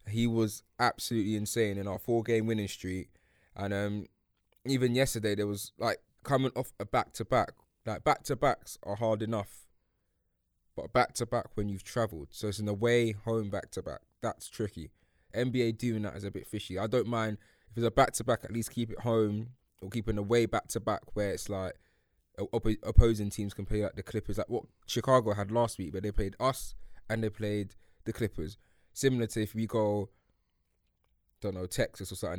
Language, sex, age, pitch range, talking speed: English, male, 20-39, 100-115 Hz, 185 wpm